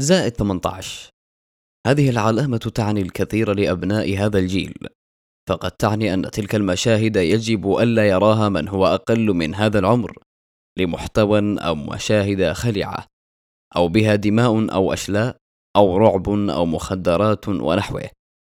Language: Arabic